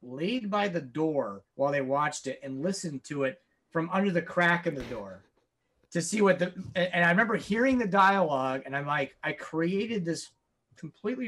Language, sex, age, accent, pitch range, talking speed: English, male, 30-49, American, 160-205 Hz, 190 wpm